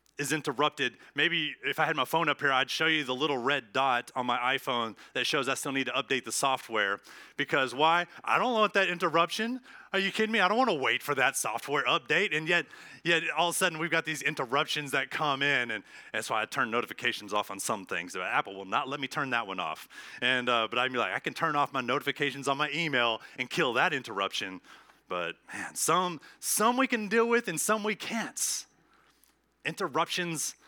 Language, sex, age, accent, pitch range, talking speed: English, male, 30-49, American, 135-165 Hz, 225 wpm